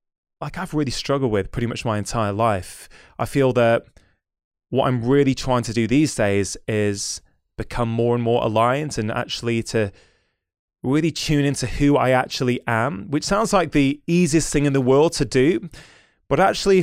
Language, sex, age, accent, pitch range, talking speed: English, male, 20-39, British, 120-150 Hz, 180 wpm